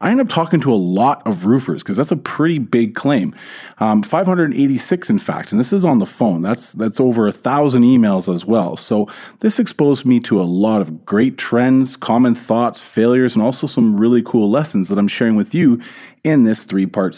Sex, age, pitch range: male, 40-59, 110-165 Hz